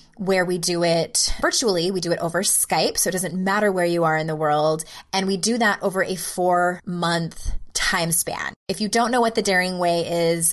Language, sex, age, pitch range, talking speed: English, female, 20-39, 170-200 Hz, 215 wpm